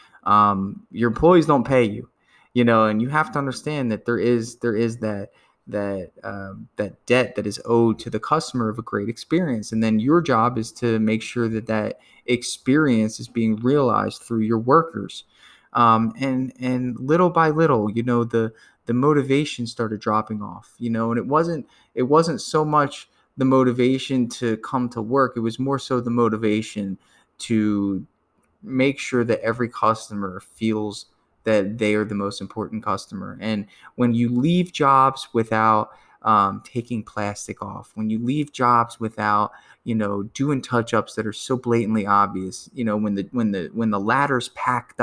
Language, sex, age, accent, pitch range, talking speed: English, male, 20-39, American, 105-130 Hz, 175 wpm